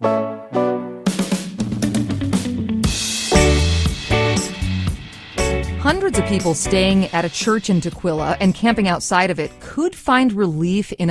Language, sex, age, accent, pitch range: English, female, 30-49, American, 155-210 Hz